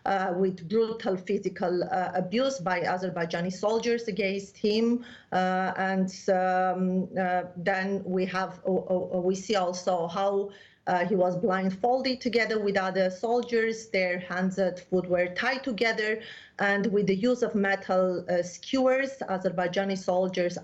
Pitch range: 185-225 Hz